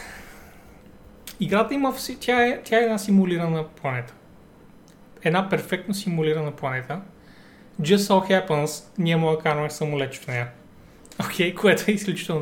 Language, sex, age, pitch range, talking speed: Bulgarian, male, 30-49, 145-195 Hz, 135 wpm